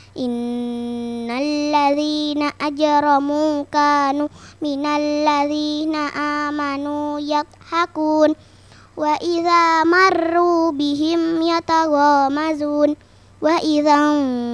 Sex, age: male, 20-39